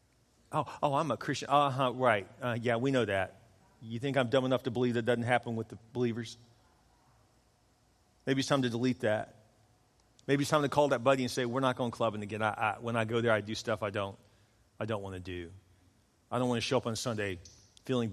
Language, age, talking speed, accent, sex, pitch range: English, 40-59, 230 wpm, American, male, 105-130 Hz